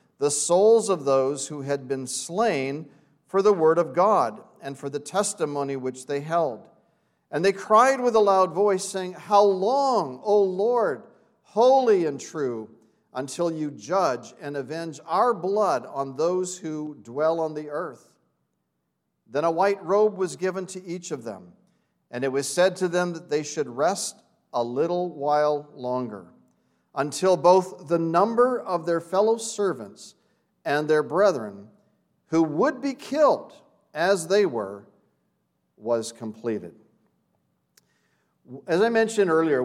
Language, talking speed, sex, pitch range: English, 145 wpm, male, 140-205 Hz